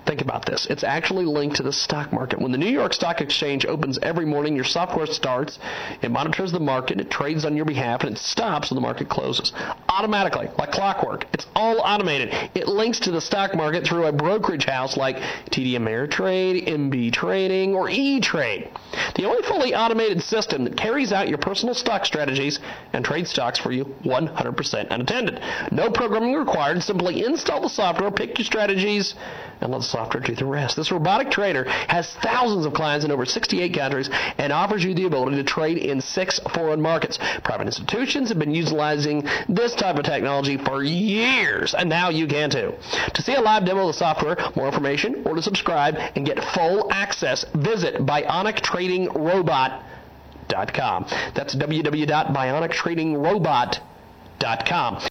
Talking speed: 170 wpm